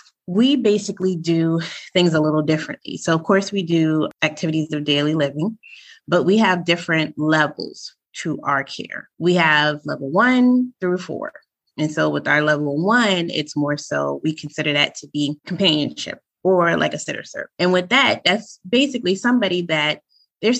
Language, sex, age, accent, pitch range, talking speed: English, female, 20-39, American, 155-210 Hz, 170 wpm